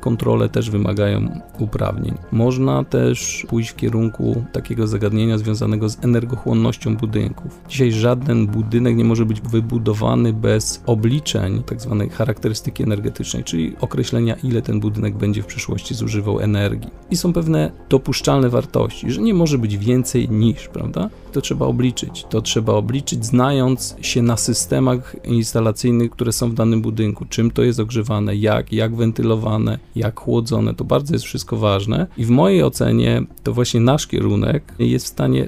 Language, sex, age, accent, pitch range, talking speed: Polish, male, 40-59, native, 105-125 Hz, 155 wpm